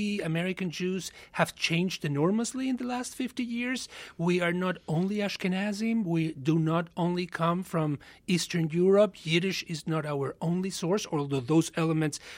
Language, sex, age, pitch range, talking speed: English, male, 40-59, 135-180 Hz, 155 wpm